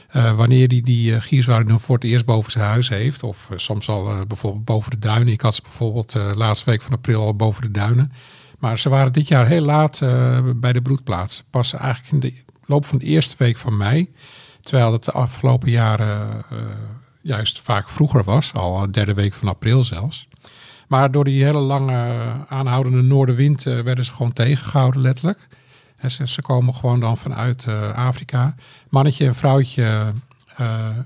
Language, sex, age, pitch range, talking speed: Dutch, male, 50-69, 115-135 Hz, 195 wpm